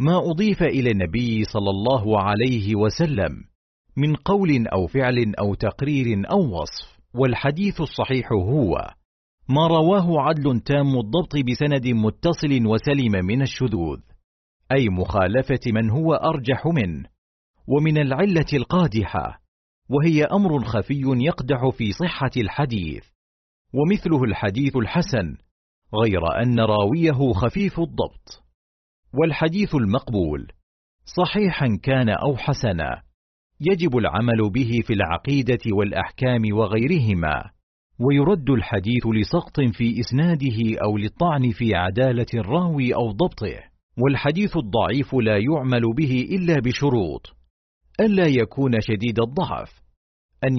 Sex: male